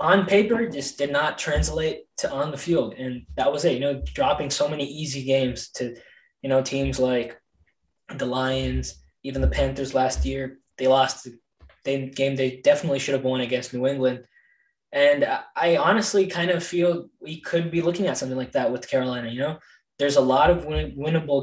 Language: English